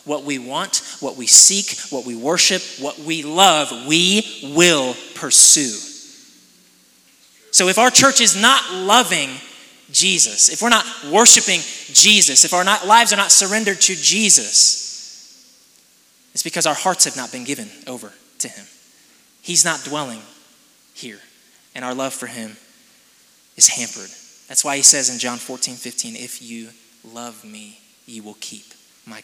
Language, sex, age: English, male, 20-39